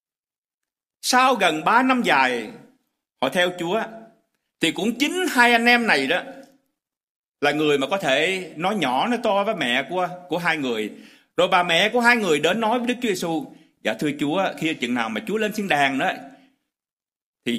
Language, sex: Vietnamese, male